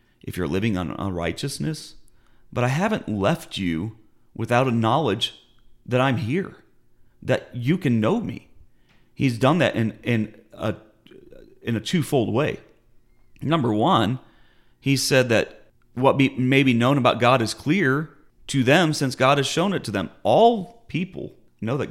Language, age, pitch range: English, 40-59, 100-135 Hz